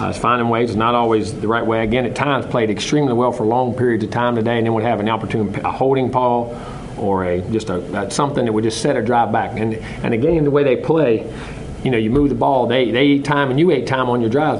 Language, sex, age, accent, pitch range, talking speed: English, male, 40-59, American, 115-135 Hz, 280 wpm